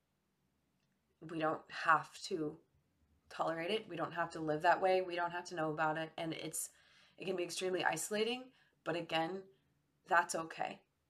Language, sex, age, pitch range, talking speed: English, female, 20-39, 160-185 Hz, 170 wpm